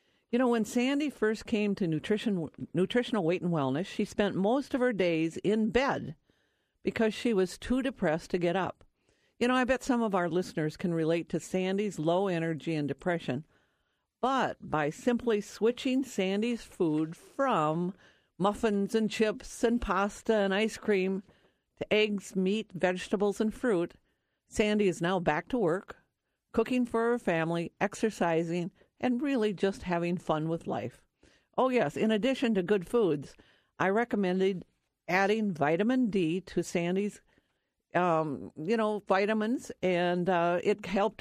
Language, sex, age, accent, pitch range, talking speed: English, female, 50-69, American, 170-225 Hz, 155 wpm